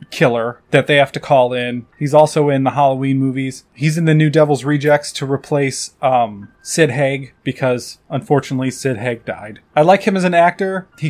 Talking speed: 195 wpm